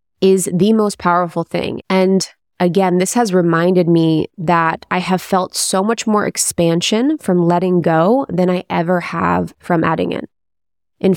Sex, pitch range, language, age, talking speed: female, 160-185 Hz, English, 20-39, 160 wpm